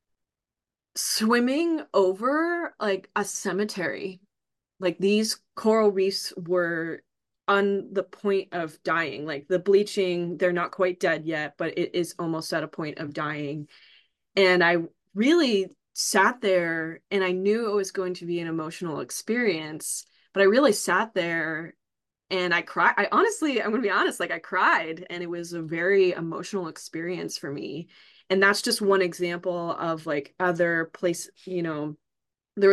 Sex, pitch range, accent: female, 170-205 Hz, American